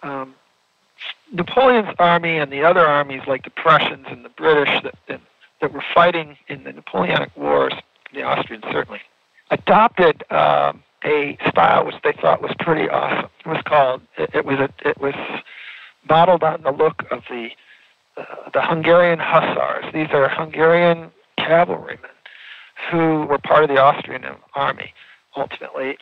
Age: 50-69